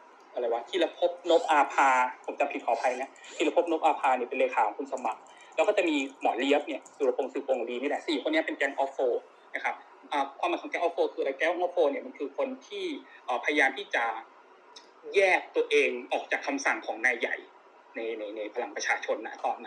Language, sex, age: Thai, male, 20-39